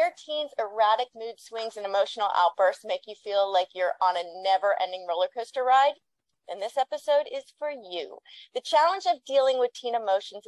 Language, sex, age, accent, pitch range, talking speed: English, female, 30-49, American, 195-270 Hz, 190 wpm